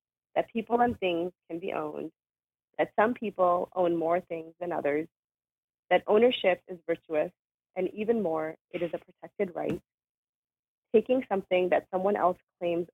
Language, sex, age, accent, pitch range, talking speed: English, female, 30-49, American, 150-195 Hz, 155 wpm